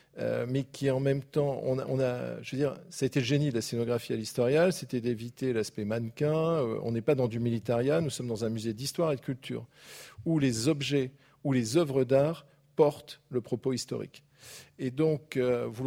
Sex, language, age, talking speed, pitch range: male, French, 40-59, 210 wpm, 120-150 Hz